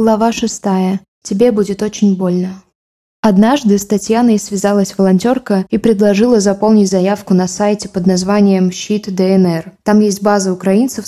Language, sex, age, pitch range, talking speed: Russian, female, 20-39, 195-225 Hz, 135 wpm